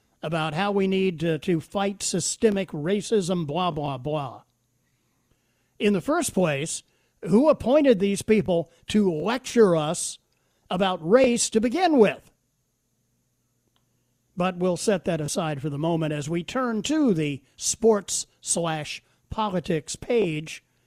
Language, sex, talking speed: English, male, 130 wpm